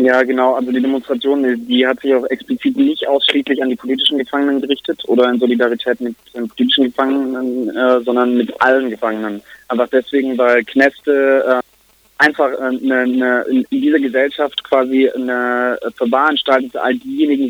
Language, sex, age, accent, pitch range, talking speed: German, male, 20-39, German, 130-160 Hz, 165 wpm